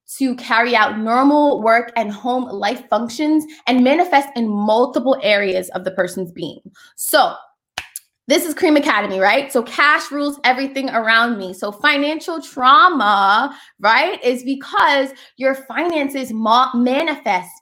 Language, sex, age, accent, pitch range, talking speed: English, female, 20-39, American, 225-290 Hz, 135 wpm